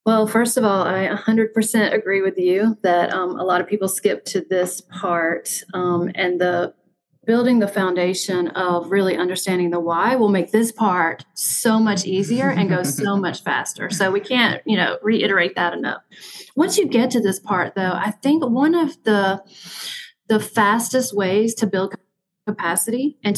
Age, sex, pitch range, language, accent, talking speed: 30-49, female, 185-230 Hz, English, American, 175 wpm